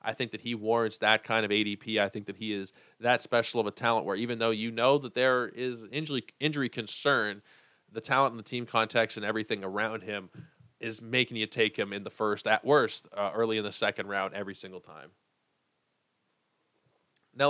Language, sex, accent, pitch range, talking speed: English, male, American, 110-135 Hz, 205 wpm